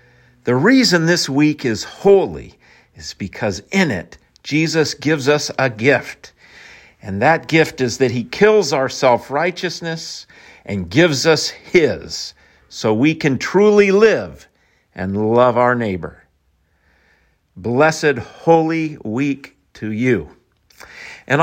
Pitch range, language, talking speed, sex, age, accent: 110-155 Hz, English, 120 wpm, male, 50-69, American